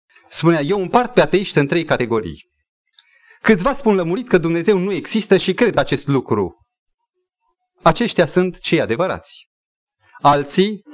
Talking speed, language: 130 wpm, Romanian